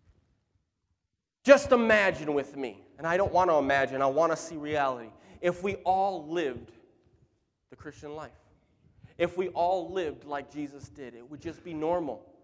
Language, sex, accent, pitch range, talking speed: English, male, American, 105-165 Hz, 165 wpm